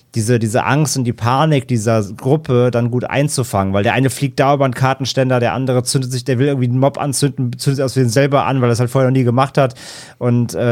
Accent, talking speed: German, 250 wpm